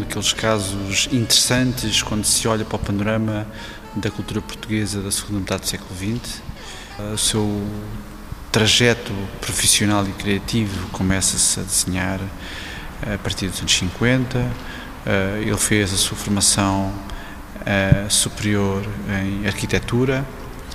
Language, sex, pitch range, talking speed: Portuguese, male, 95-115 Hz, 115 wpm